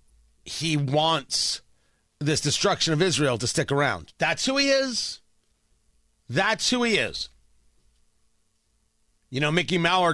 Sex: male